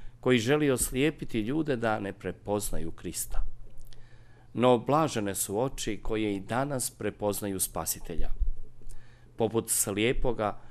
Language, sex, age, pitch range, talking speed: Croatian, male, 40-59, 105-125 Hz, 105 wpm